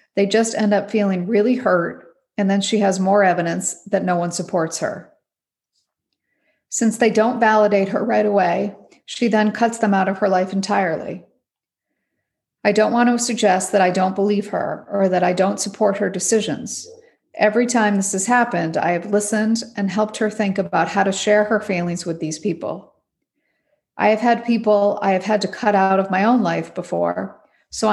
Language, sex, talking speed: English, female, 190 wpm